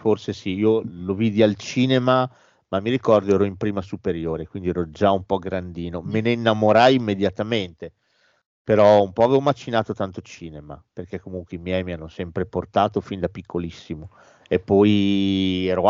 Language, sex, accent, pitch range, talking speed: Italian, male, native, 90-120 Hz, 170 wpm